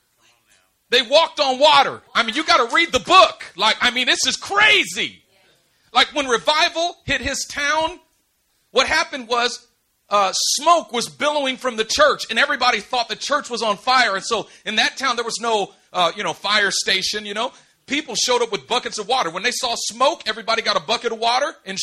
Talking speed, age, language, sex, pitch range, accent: 205 wpm, 40-59, English, male, 190-255 Hz, American